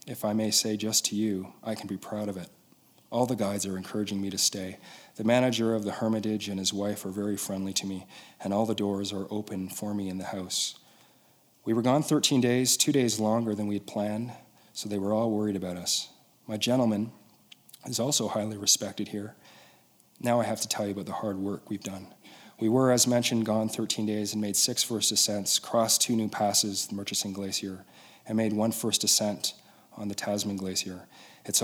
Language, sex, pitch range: English, male, 100-120 Hz